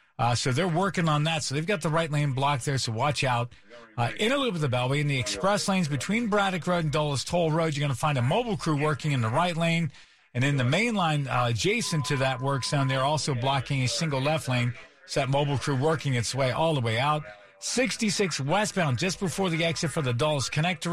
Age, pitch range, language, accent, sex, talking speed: 50-69, 135-180 Hz, English, American, male, 245 wpm